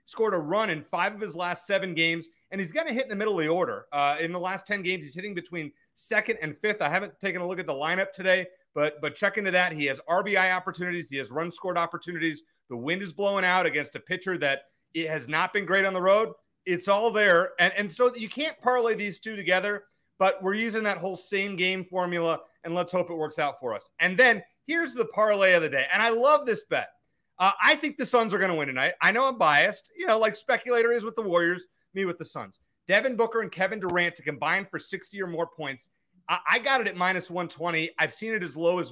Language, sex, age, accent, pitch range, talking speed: English, male, 30-49, American, 170-215 Hz, 255 wpm